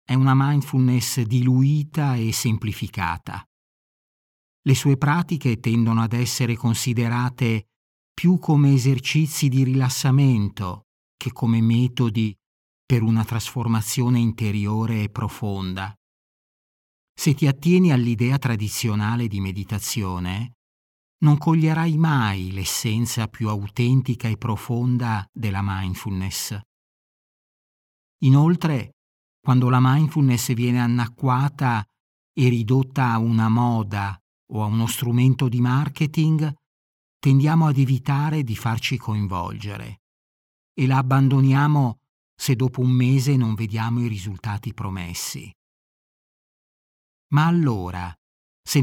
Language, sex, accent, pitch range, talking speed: Italian, male, native, 105-135 Hz, 100 wpm